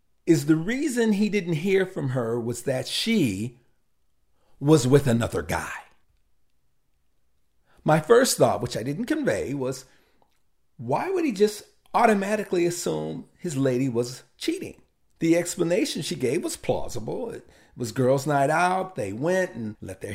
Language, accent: English, American